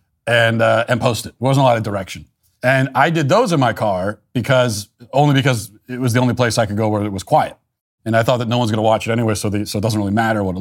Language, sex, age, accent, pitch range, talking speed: English, male, 40-59, American, 105-130 Hz, 300 wpm